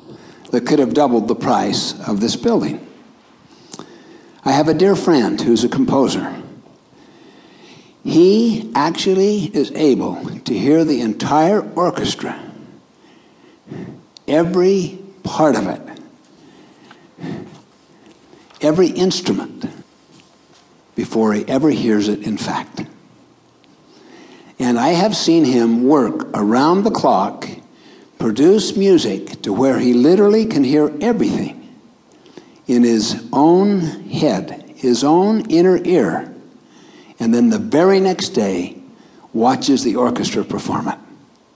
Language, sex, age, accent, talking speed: English, male, 60-79, American, 110 wpm